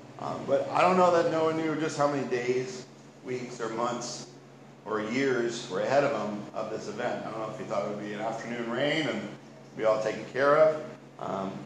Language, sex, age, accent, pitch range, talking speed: English, male, 40-59, American, 105-125 Hz, 225 wpm